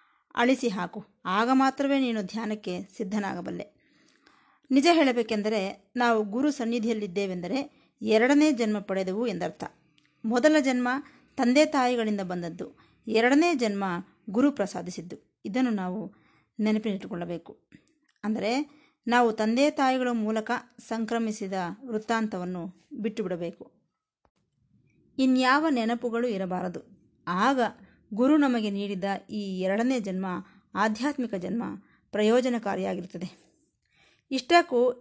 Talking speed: 85 wpm